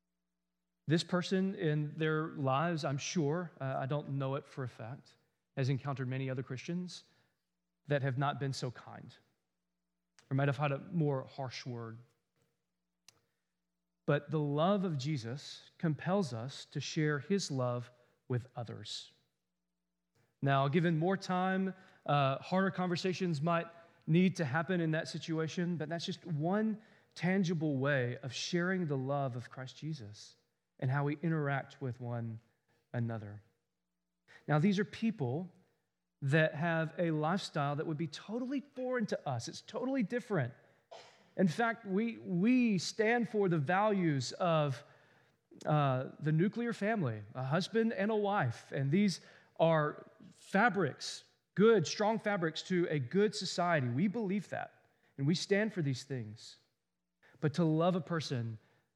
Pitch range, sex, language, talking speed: 130-185 Hz, male, English, 145 wpm